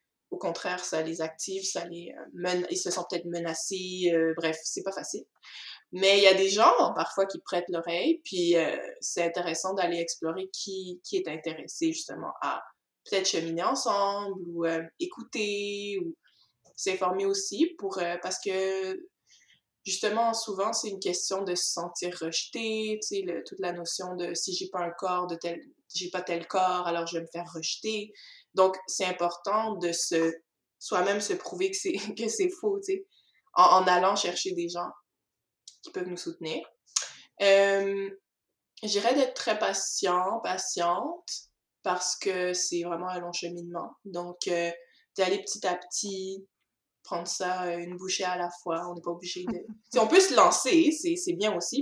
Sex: female